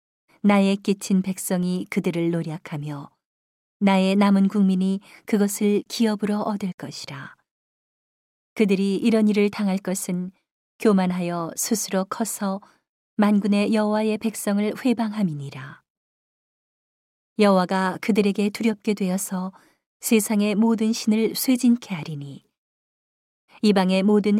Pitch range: 175-210 Hz